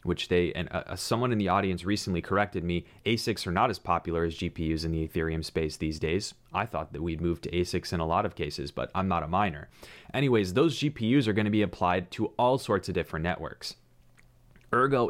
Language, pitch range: English, 85-105 Hz